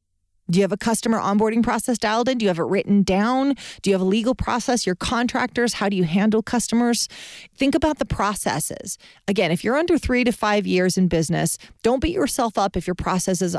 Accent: American